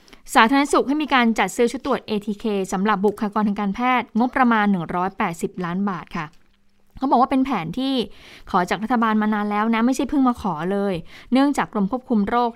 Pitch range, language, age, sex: 190-235 Hz, Thai, 20-39, female